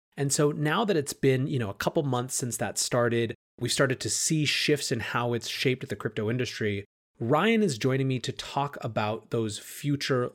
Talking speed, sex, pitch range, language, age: 205 wpm, male, 110-140 Hz, English, 30-49